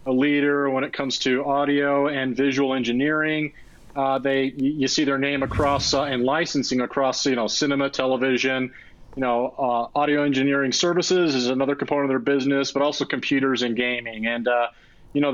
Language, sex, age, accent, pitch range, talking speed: English, male, 40-59, American, 130-150 Hz, 180 wpm